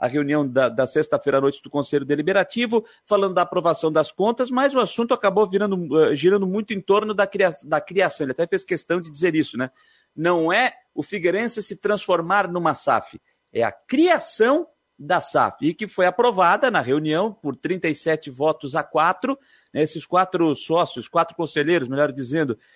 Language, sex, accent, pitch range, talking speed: Portuguese, male, Brazilian, 155-210 Hz, 180 wpm